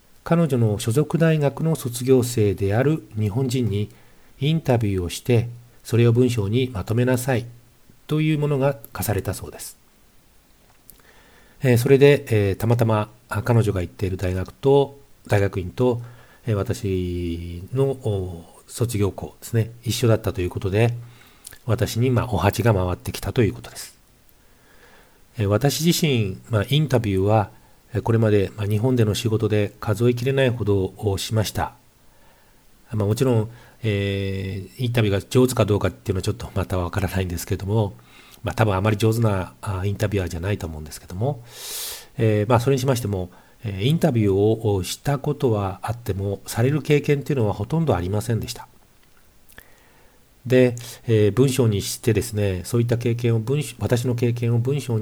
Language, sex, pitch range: Japanese, male, 100-125 Hz